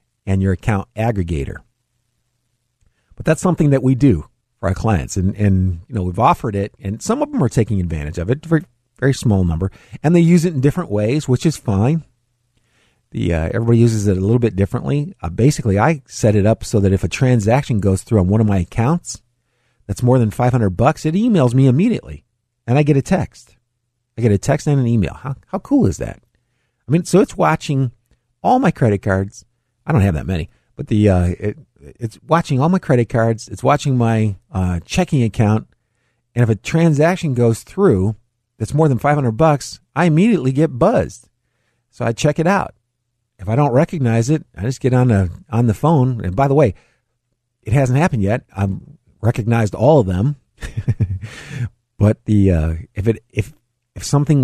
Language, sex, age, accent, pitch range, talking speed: English, male, 50-69, American, 105-140 Hz, 200 wpm